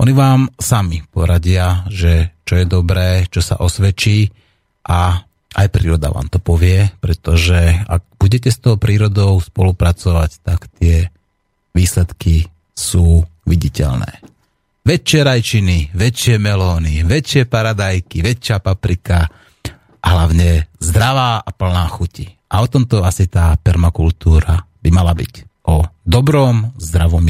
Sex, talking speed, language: male, 120 wpm, Slovak